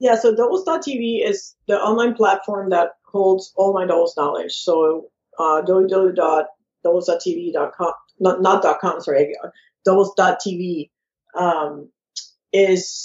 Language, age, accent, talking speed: English, 50-69, American, 105 wpm